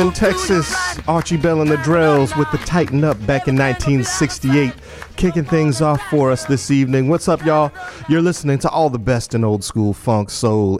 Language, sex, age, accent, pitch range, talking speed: English, male, 40-59, American, 110-150 Hz, 195 wpm